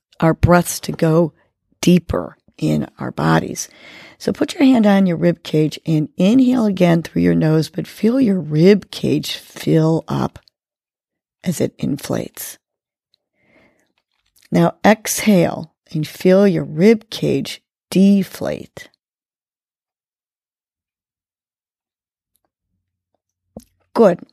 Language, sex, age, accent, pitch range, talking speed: English, female, 40-59, American, 155-195 Hz, 100 wpm